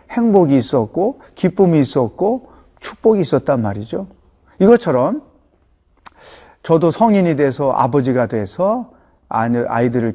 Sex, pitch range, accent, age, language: male, 135-195 Hz, native, 40-59, Korean